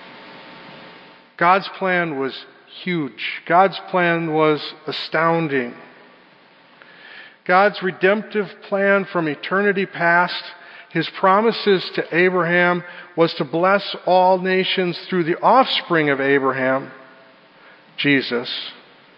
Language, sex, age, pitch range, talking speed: English, male, 50-69, 130-185 Hz, 90 wpm